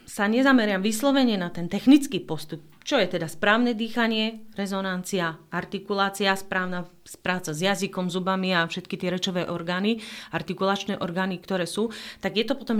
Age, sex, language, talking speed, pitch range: 30-49, female, Slovak, 150 wpm, 175-215 Hz